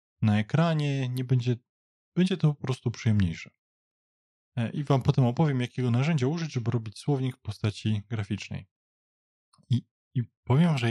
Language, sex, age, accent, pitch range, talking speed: Polish, male, 20-39, native, 105-130 Hz, 145 wpm